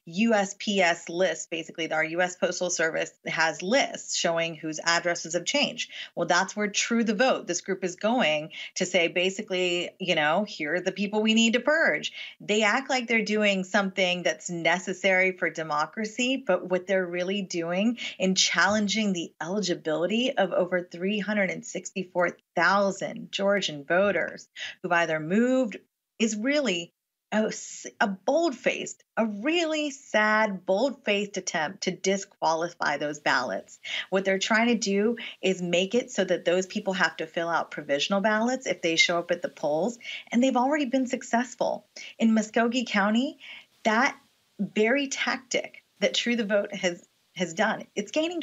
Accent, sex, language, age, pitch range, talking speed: American, female, English, 30-49, 180-240 Hz, 150 wpm